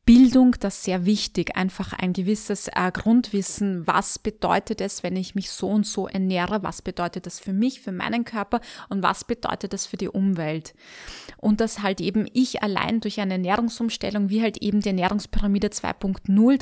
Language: German